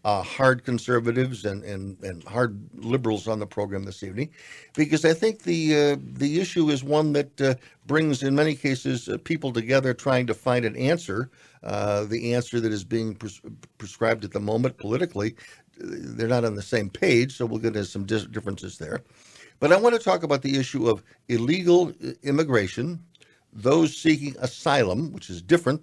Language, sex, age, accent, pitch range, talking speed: English, male, 60-79, American, 105-135 Hz, 175 wpm